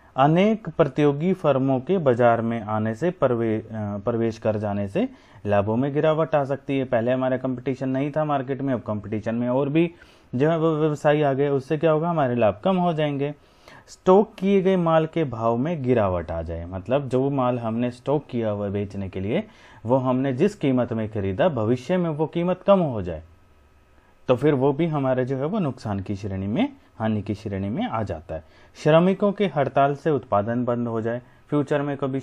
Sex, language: male, Hindi